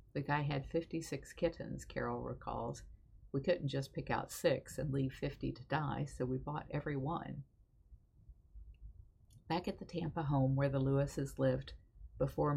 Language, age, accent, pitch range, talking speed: English, 50-69, American, 130-155 Hz, 160 wpm